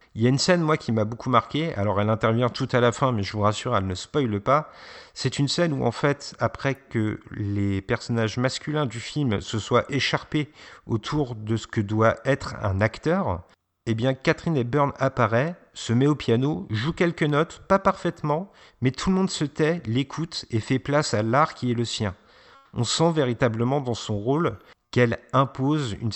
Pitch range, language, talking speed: 110-145 Hz, French, 200 wpm